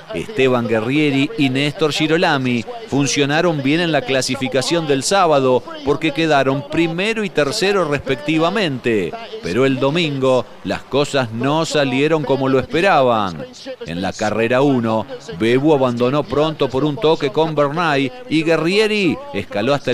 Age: 40-59